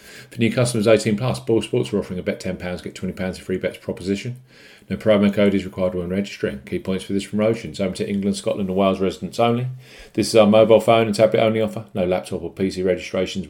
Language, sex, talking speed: English, male, 230 wpm